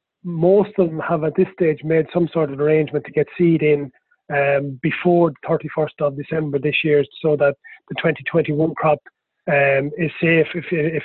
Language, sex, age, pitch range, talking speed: English, male, 30-49, 150-170 Hz, 185 wpm